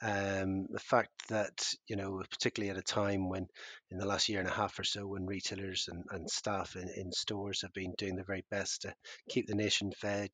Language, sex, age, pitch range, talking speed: English, male, 30-49, 95-110 Hz, 225 wpm